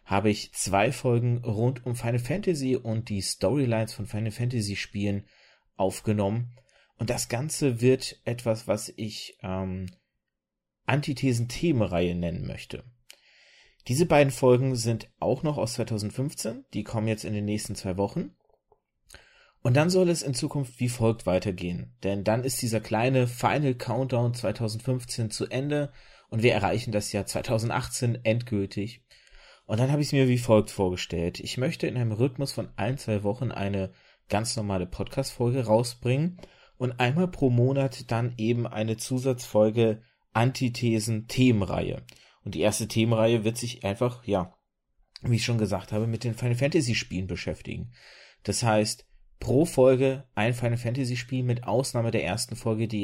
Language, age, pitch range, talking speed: German, 30-49, 105-125 Hz, 150 wpm